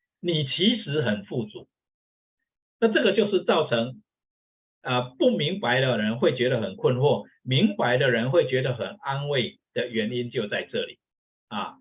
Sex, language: male, Chinese